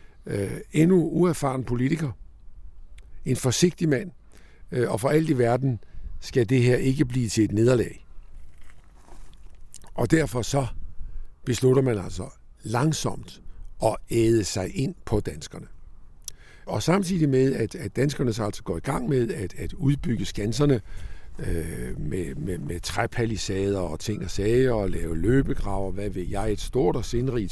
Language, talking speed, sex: Danish, 150 wpm, male